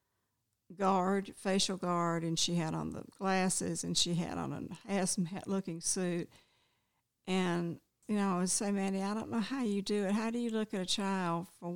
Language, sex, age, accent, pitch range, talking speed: English, female, 60-79, American, 170-200 Hz, 200 wpm